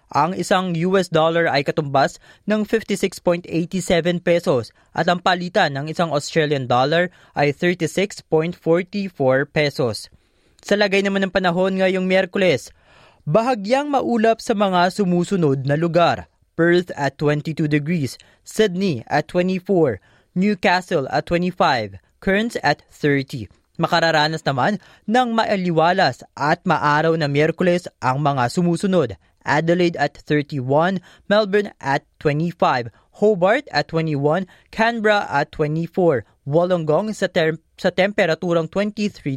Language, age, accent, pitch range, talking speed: Filipino, 20-39, native, 150-190 Hz, 115 wpm